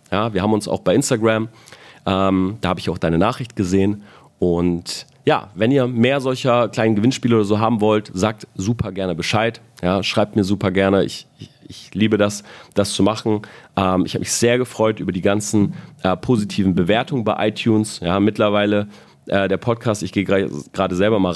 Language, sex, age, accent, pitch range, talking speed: German, male, 30-49, German, 95-115 Hz, 195 wpm